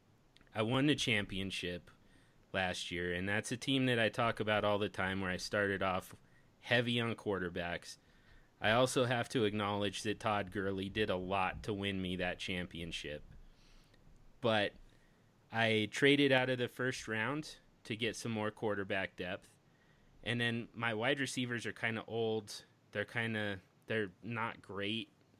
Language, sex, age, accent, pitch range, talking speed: English, male, 30-49, American, 100-120 Hz, 165 wpm